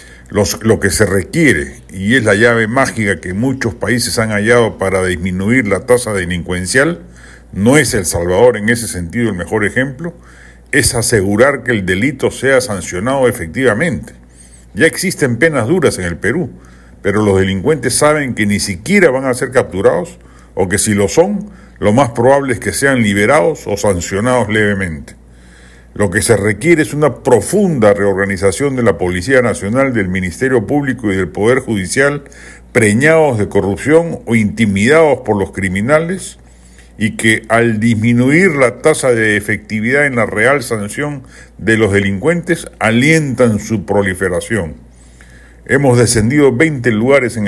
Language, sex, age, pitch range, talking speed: Spanish, male, 50-69, 95-125 Hz, 150 wpm